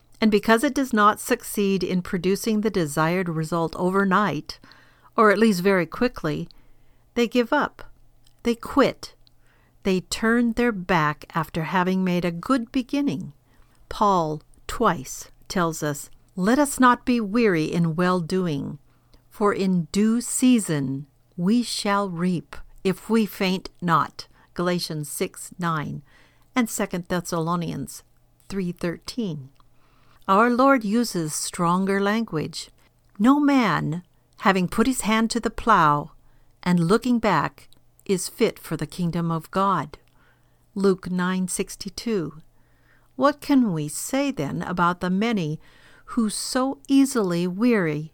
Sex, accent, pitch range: female, American, 160-225 Hz